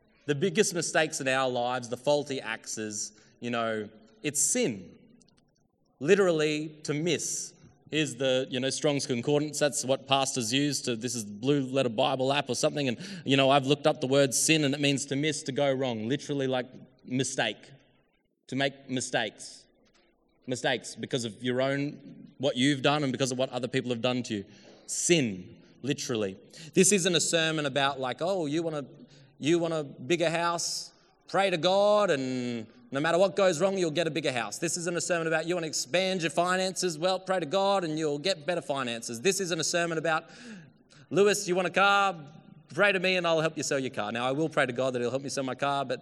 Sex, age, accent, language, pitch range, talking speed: male, 20-39, Australian, English, 130-170 Hz, 210 wpm